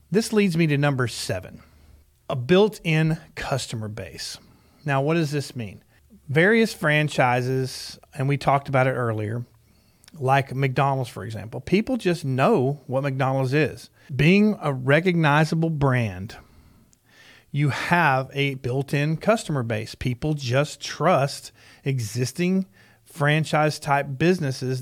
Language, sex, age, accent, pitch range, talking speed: English, male, 40-59, American, 125-155 Hz, 120 wpm